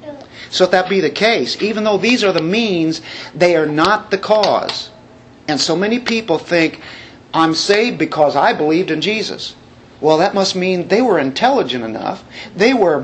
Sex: male